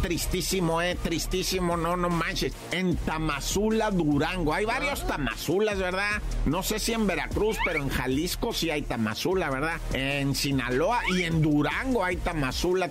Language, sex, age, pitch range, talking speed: Spanish, male, 50-69, 150-190 Hz, 150 wpm